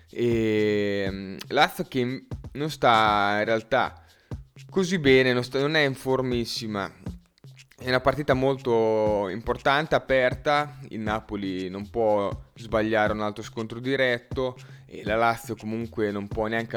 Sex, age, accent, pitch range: male, 20-39, native, 105-130 Hz